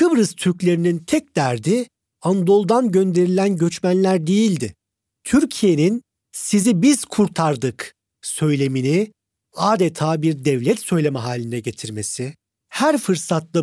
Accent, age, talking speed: native, 50-69, 90 wpm